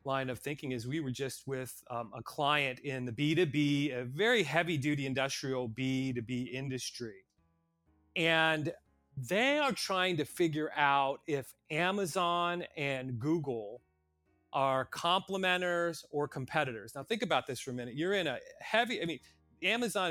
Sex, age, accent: male, 30-49, American